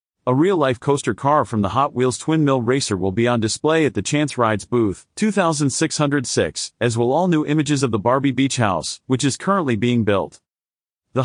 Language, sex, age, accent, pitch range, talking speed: English, male, 40-59, American, 115-150 Hz, 195 wpm